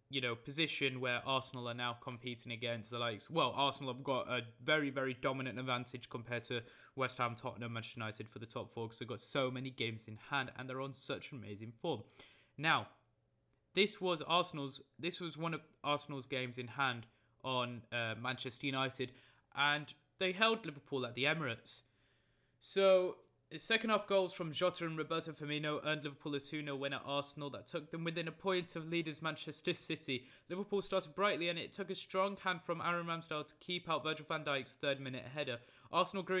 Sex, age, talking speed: male, 20-39, 195 wpm